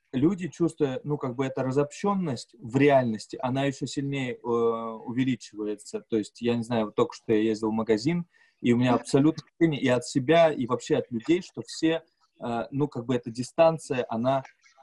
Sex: male